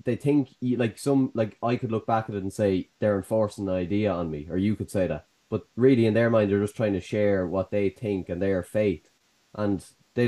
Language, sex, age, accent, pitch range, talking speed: English, male, 20-39, Irish, 95-115 Hz, 245 wpm